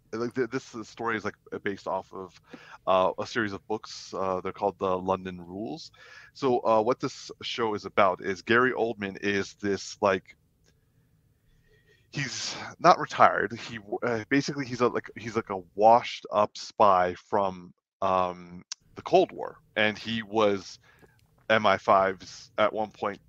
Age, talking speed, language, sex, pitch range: 30-49, 155 wpm, English, male, 100-120 Hz